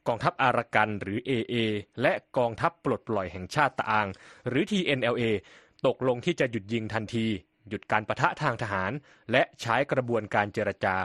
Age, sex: 20-39, male